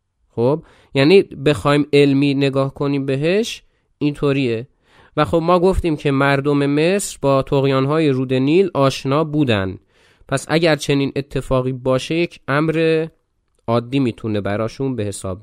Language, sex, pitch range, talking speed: Persian, male, 105-150 Hz, 130 wpm